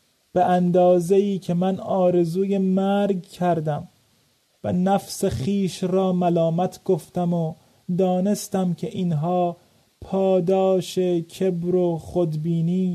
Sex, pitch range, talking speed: male, 165-190 Hz, 95 wpm